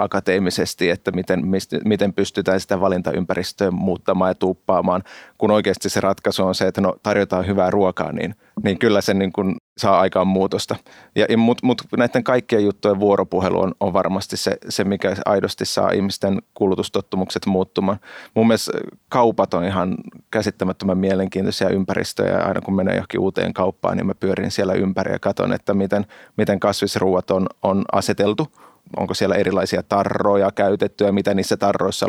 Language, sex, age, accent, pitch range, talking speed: Finnish, male, 30-49, native, 95-110 Hz, 155 wpm